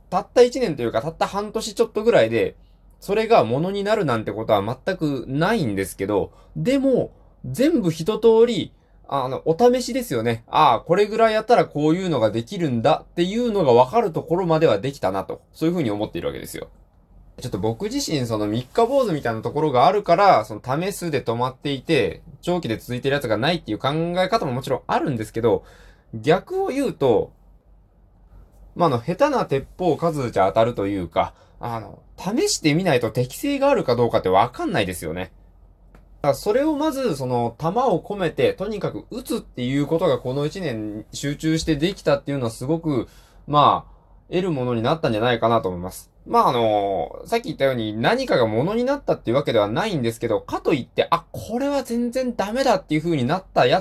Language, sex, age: Japanese, male, 20-39